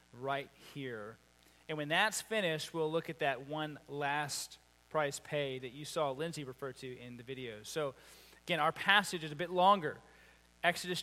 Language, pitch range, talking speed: English, 150-220 Hz, 175 wpm